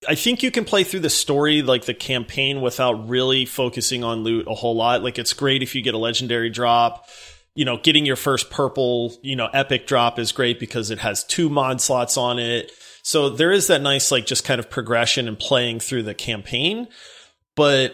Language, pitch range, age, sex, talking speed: English, 120-140 Hz, 30-49, male, 215 wpm